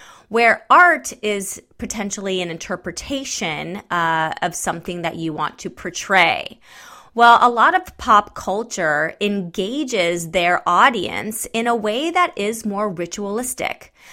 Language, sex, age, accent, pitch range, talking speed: English, female, 30-49, American, 185-235 Hz, 125 wpm